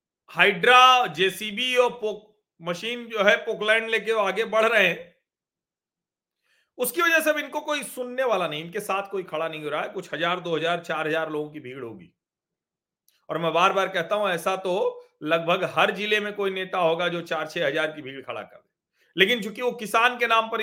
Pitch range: 175-235 Hz